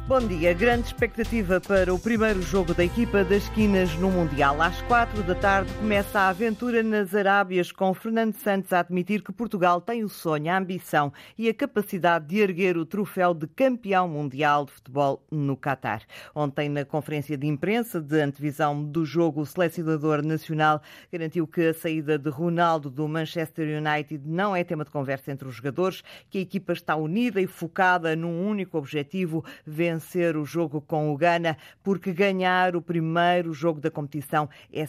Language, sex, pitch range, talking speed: Portuguese, female, 150-195 Hz, 175 wpm